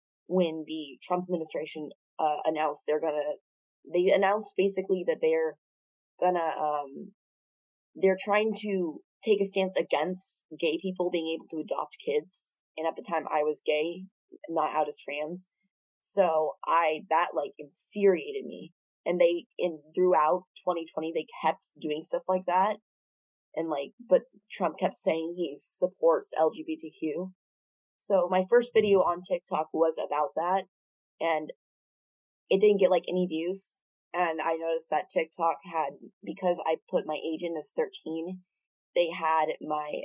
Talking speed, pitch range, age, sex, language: 150 wpm, 155-190 Hz, 20-39, female, English